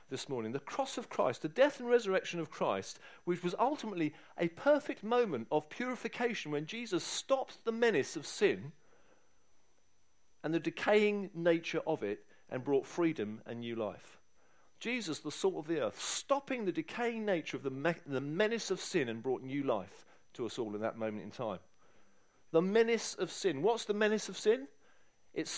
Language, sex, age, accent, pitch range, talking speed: English, male, 50-69, British, 155-230 Hz, 185 wpm